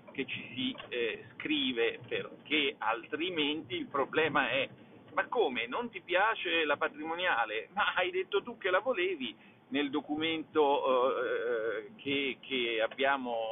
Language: Italian